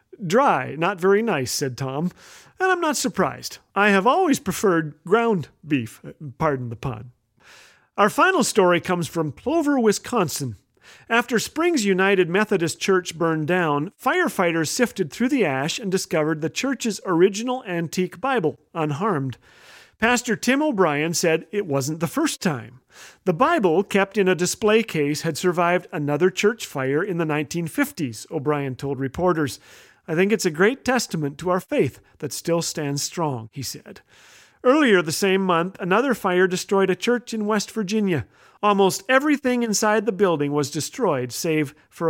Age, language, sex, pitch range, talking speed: 40-59, English, male, 155-215 Hz, 155 wpm